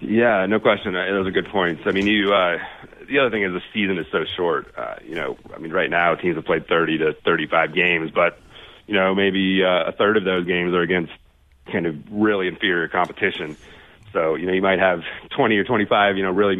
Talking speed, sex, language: 230 wpm, male, English